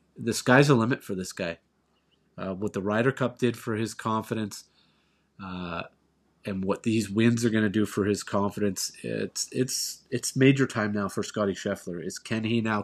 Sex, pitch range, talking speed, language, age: male, 100-125 Hz, 190 wpm, English, 30-49